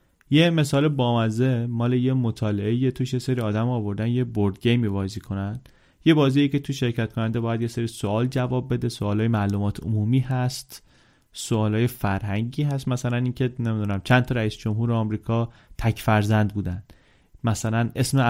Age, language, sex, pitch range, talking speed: 30-49, Persian, male, 110-140 Hz, 160 wpm